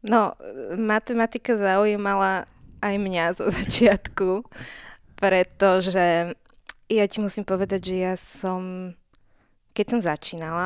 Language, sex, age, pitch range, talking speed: Slovak, female, 20-39, 170-200 Hz, 100 wpm